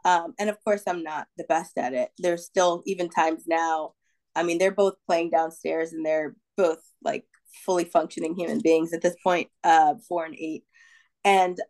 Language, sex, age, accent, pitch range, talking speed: English, female, 20-39, American, 170-210 Hz, 190 wpm